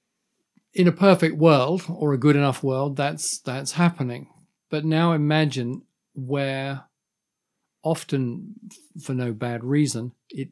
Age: 50-69